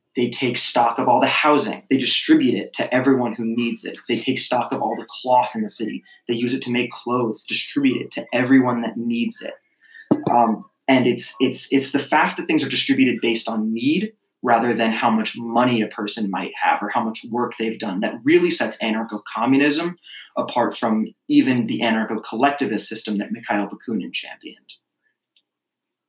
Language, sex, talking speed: English, male, 185 wpm